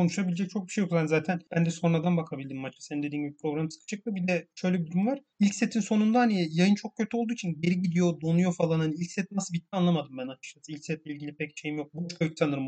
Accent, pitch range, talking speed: native, 145-180 Hz, 255 wpm